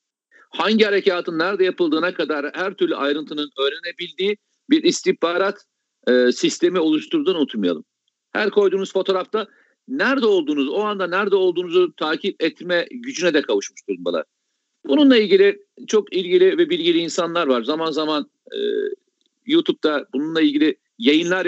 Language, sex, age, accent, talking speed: Turkish, male, 50-69, native, 125 wpm